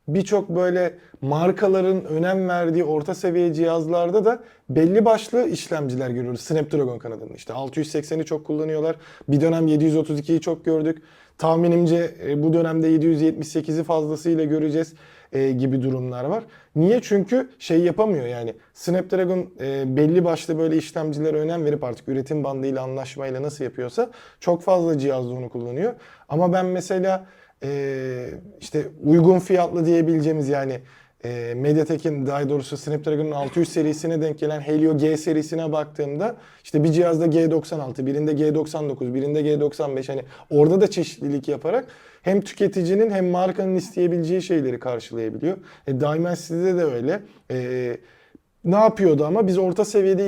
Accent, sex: native, male